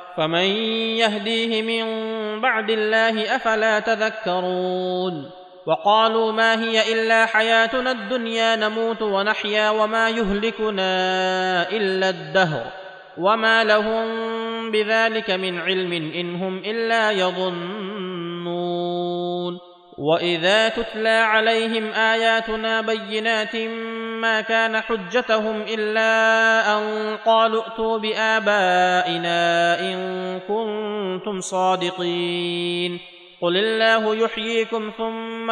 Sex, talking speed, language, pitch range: male, 80 wpm, Arabic, 185-225 Hz